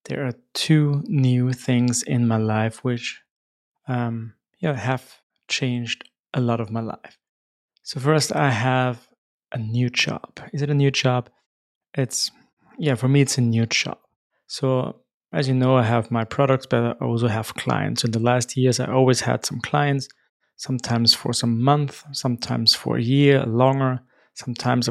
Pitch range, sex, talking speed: 120-135 Hz, male, 170 wpm